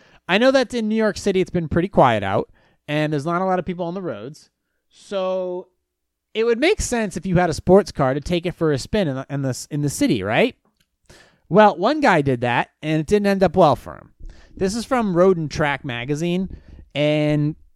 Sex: male